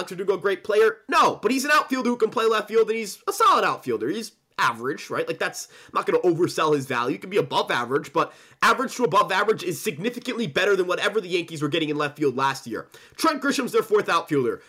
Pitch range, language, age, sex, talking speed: 200-305 Hz, English, 20-39, male, 240 wpm